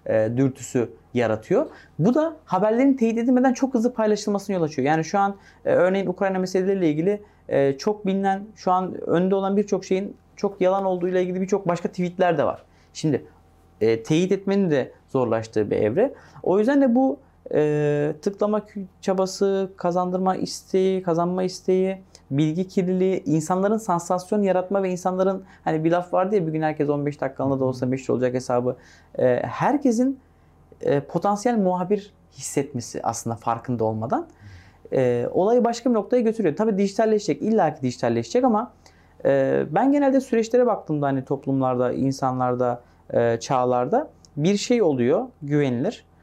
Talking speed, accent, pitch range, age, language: 135 wpm, native, 135-205 Hz, 30-49, Turkish